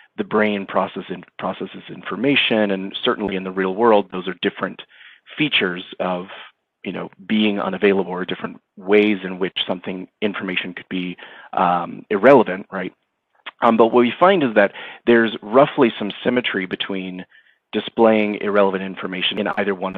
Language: English